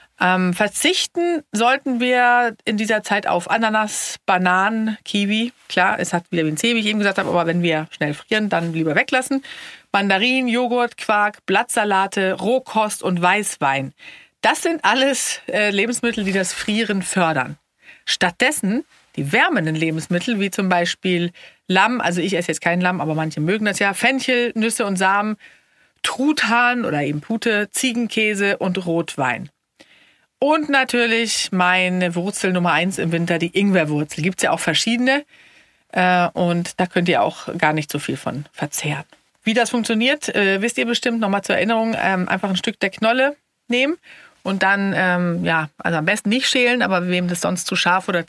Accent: German